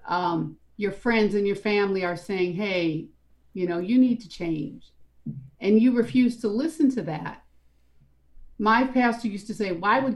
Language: English